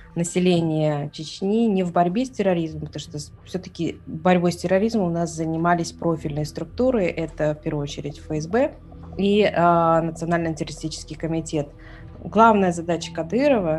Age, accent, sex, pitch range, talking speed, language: 20-39, native, female, 155-190 Hz, 135 wpm, Russian